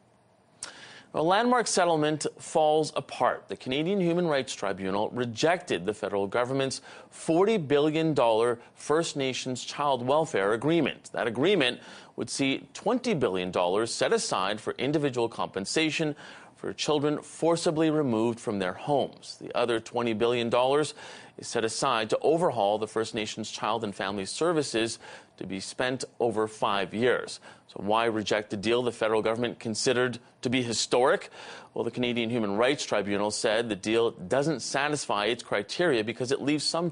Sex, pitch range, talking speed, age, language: male, 115-150 Hz, 145 wpm, 30-49, English